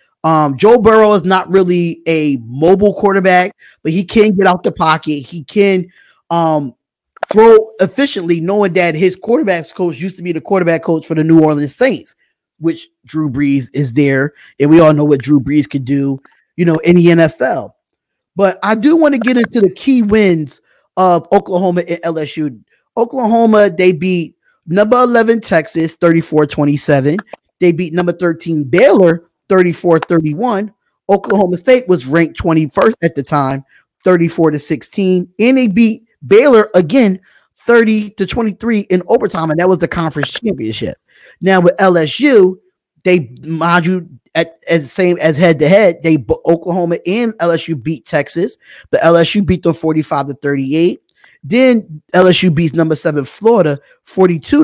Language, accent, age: English, American, 20-39